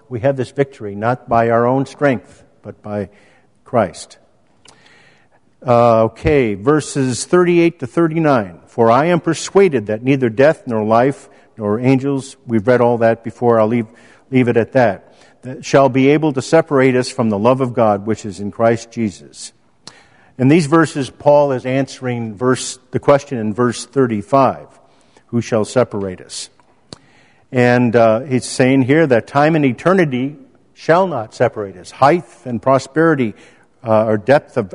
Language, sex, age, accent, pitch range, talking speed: English, male, 50-69, American, 115-140 Hz, 160 wpm